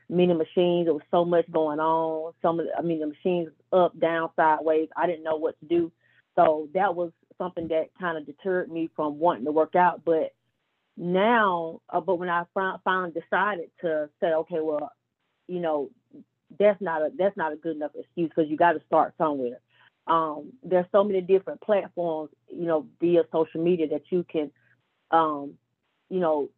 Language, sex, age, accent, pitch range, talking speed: English, female, 30-49, American, 155-185 Hz, 190 wpm